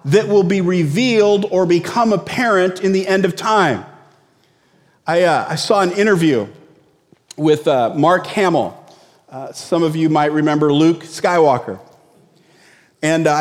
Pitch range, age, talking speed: 145-195 Hz, 40-59, 145 wpm